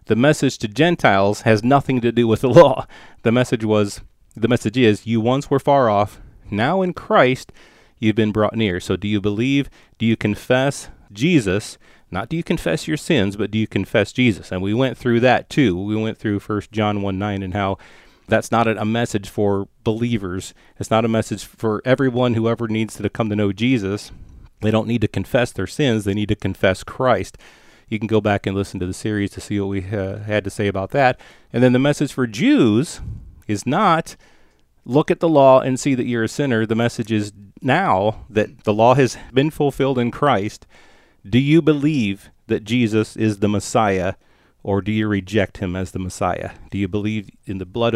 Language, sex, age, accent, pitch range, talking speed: English, male, 30-49, American, 100-125 Hz, 210 wpm